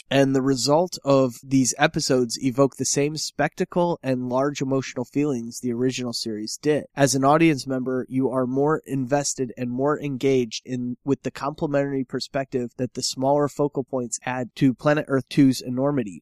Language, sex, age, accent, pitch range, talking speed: English, male, 20-39, American, 130-150 Hz, 165 wpm